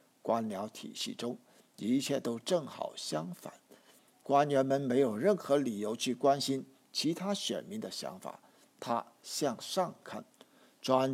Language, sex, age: Chinese, male, 50-69